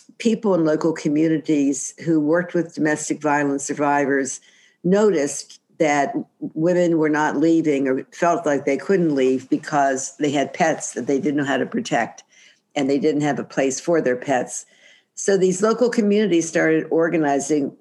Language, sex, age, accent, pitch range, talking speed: English, female, 60-79, American, 145-170 Hz, 160 wpm